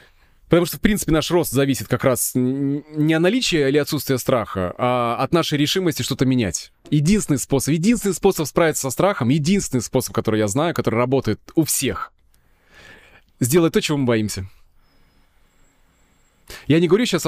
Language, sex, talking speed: Russian, male, 160 wpm